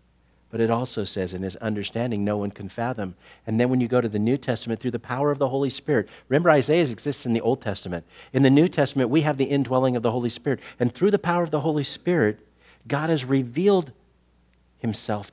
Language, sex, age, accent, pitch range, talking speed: English, male, 50-69, American, 85-140 Hz, 225 wpm